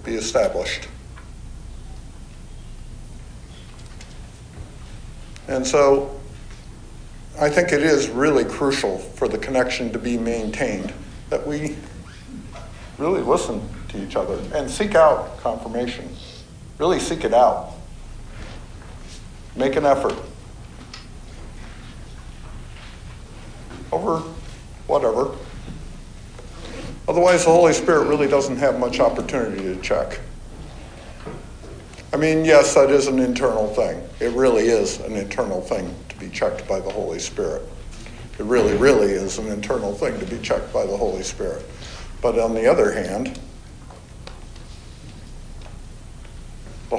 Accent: American